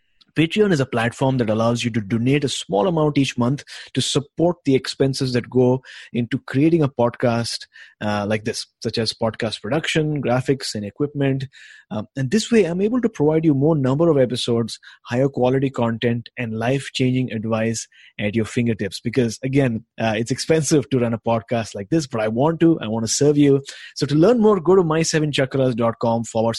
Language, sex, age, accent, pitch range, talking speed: English, male, 20-39, Indian, 120-155 Hz, 190 wpm